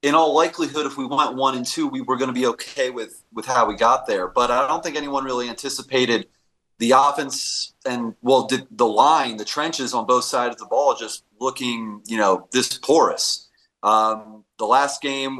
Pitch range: 120-160 Hz